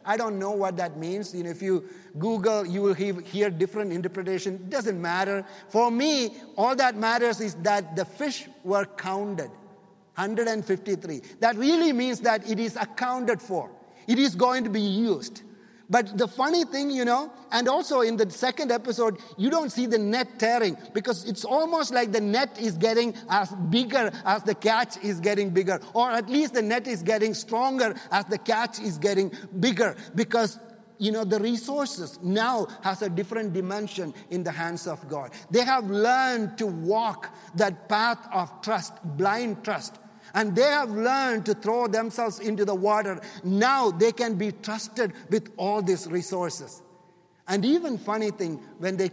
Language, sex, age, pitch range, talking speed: English, male, 50-69, 195-245 Hz, 175 wpm